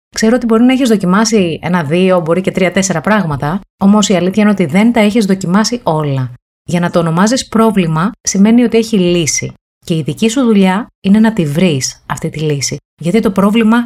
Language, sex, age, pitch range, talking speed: Greek, female, 30-49, 155-220 Hz, 200 wpm